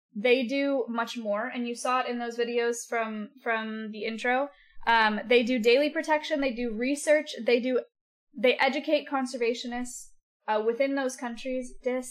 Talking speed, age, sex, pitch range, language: 165 wpm, 10-29, female, 220-260 Hz, English